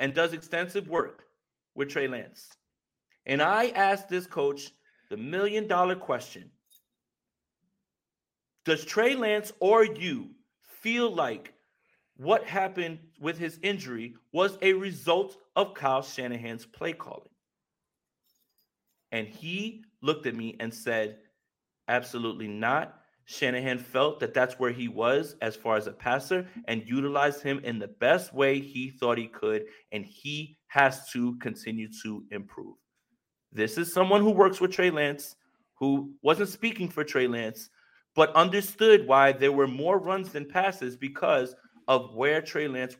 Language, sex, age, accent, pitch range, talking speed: English, male, 40-59, American, 125-190 Hz, 140 wpm